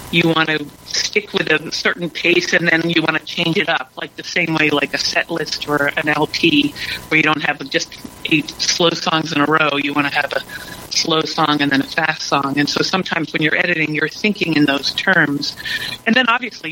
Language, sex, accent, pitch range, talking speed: English, female, American, 145-175 Hz, 230 wpm